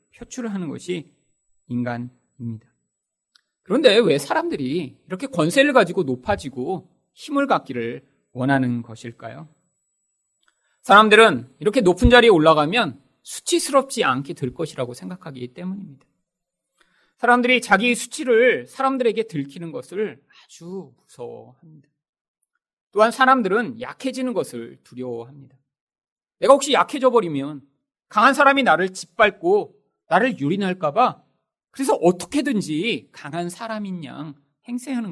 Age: 40-59